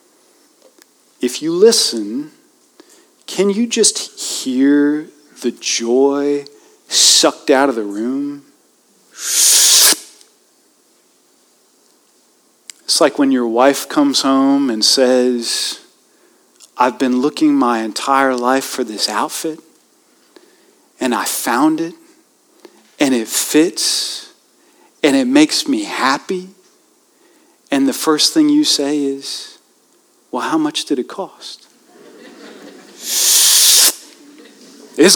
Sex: male